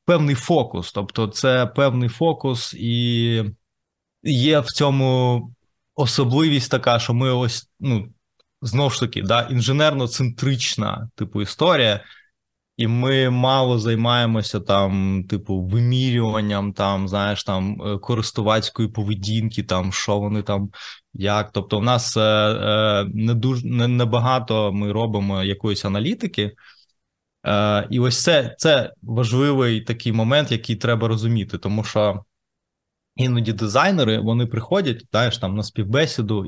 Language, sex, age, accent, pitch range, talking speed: Ukrainian, male, 20-39, native, 105-130 Hz, 125 wpm